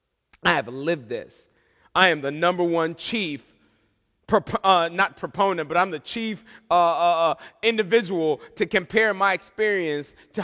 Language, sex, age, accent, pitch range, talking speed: English, male, 30-49, American, 195-255 Hz, 150 wpm